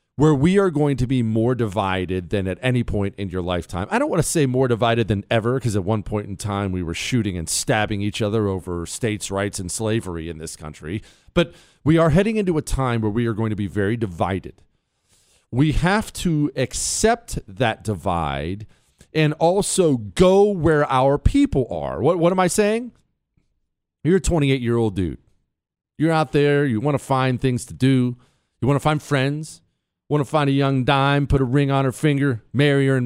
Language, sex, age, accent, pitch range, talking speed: English, male, 40-59, American, 105-155 Hz, 205 wpm